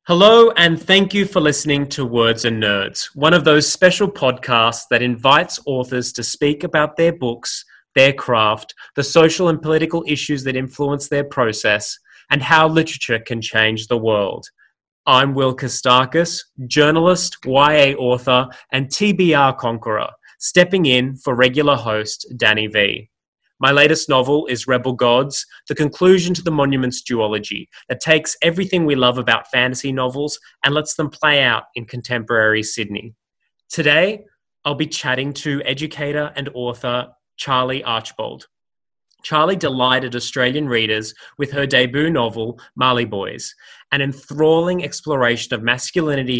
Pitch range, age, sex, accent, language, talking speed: 125-155 Hz, 20-39, male, Australian, English, 140 wpm